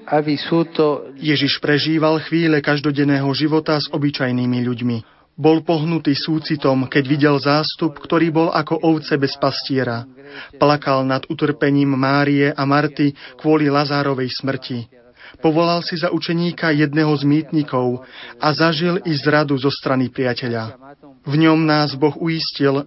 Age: 30-49